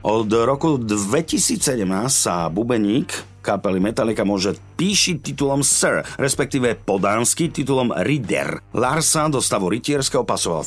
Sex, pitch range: male, 100-140 Hz